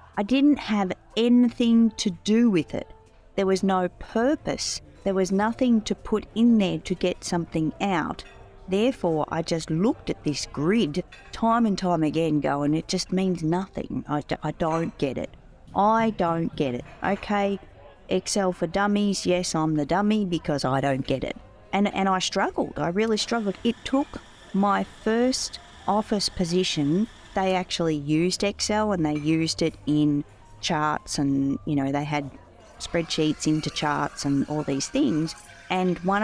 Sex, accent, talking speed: female, Australian, 160 wpm